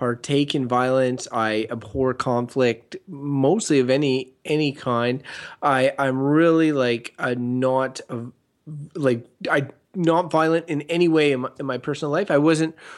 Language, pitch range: English, 125-160 Hz